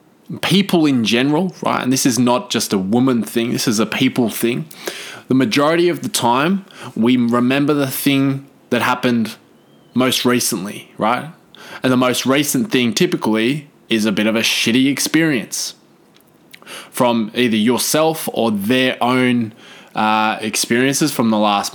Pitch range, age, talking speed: 115-135 Hz, 20-39, 150 wpm